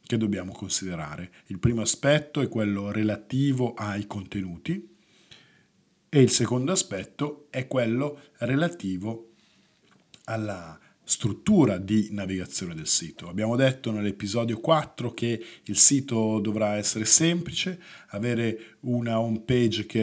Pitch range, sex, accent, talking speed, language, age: 100-130 Hz, male, native, 115 wpm, Italian, 50-69